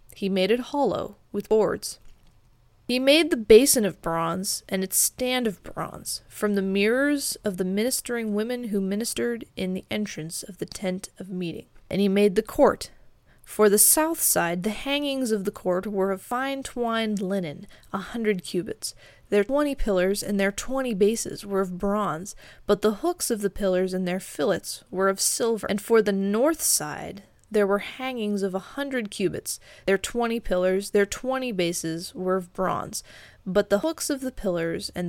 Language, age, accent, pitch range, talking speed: English, 20-39, American, 185-230 Hz, 180 wpm